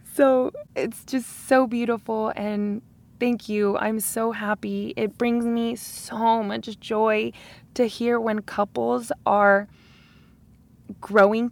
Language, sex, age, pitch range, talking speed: English, female, 20-39, 195-235 Hz, 120 wpm